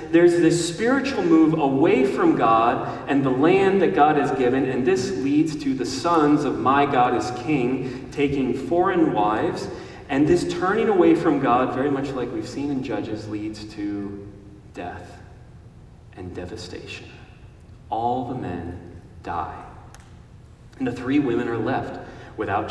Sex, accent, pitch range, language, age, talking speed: male, American, 115-145 Hz, English, 30-49, 150 wpm